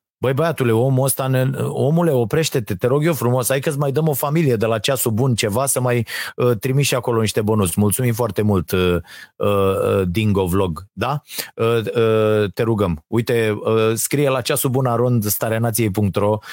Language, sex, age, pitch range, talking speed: Romanian, male, 30-49, 100-130 Hz, 170 wpm